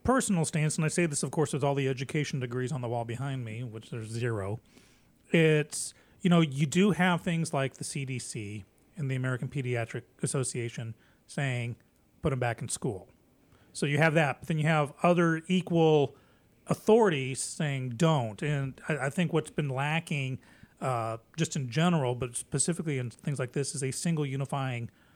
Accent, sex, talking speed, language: American, male, 180 wpm, English